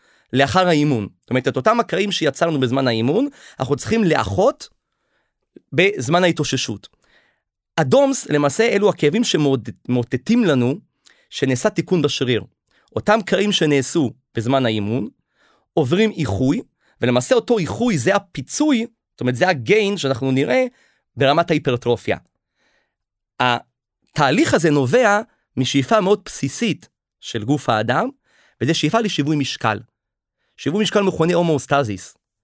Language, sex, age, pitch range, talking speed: Hebrew, male, 30-49, 135-200 Hz, 115 wpm